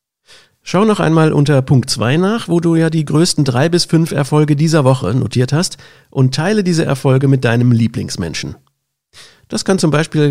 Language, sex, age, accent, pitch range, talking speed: German, male, 50-69, German, 120-165 Hz, 180 wpm